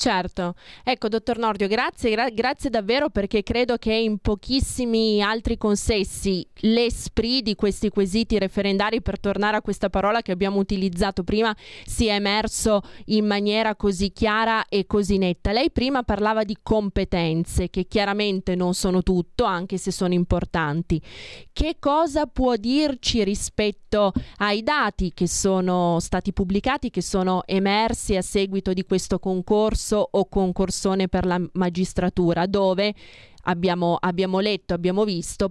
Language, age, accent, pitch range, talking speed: Italian, 20-39, native, 180-215 Hz, 140 wpm